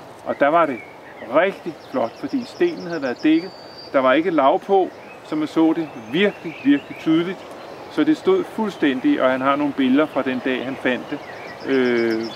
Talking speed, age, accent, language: 190 wpm, 40-59, native, Danish